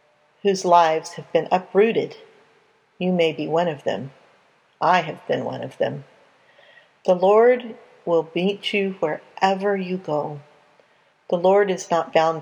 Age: 50-69